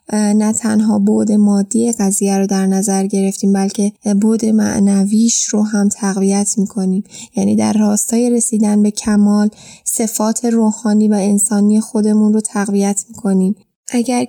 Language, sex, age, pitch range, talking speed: Persian, female, 10-29, 205-230 Hz, 130 wpm